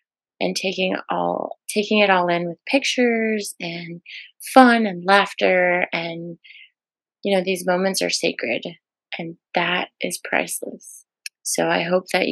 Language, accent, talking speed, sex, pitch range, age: English, American, 135 wpm, female, 180-220 Hz, 20-39